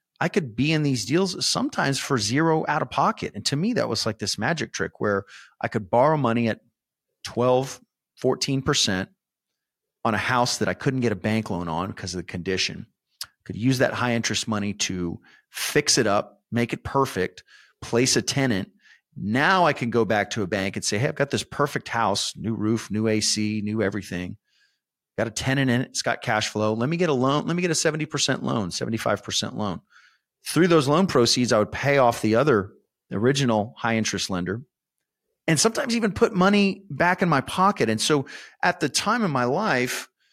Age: 40-59